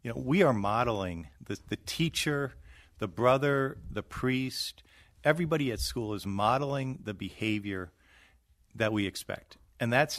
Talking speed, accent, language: 140 wpm, American, English